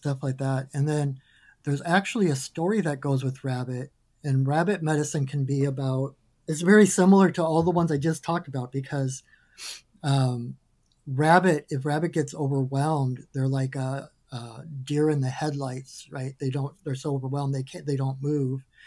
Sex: male